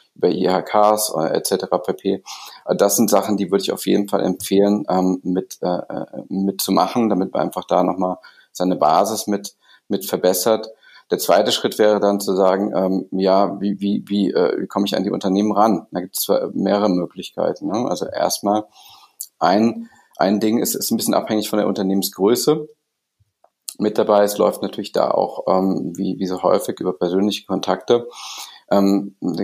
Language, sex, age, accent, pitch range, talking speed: German, male, 40-59, German, 95-105 Hz, 175 wpm